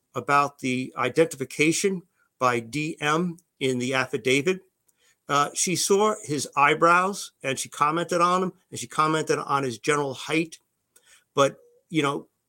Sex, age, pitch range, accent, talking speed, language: male, 50-69, 130-165 Hz, American, 135 wpm, English